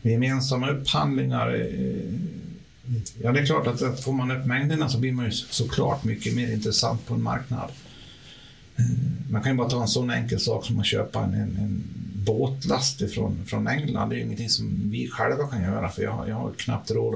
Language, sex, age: Swedish, male, 50-69